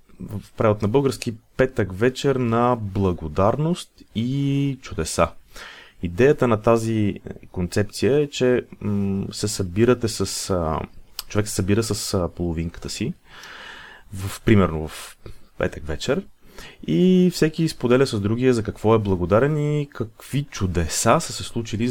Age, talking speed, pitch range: 30-49, 120 wpm, 95-125 Hz